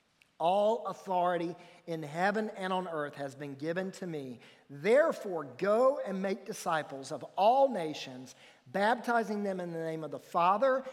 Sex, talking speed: male, 155 wpm